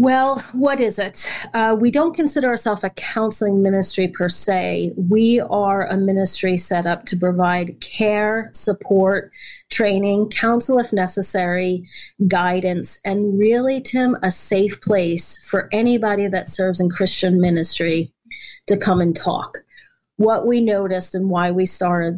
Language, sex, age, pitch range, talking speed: English, female, 40-59, 180-210 Hz, 145 wpm